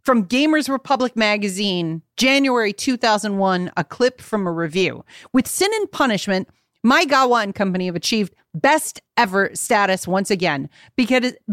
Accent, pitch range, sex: American, 205-280 Hz, female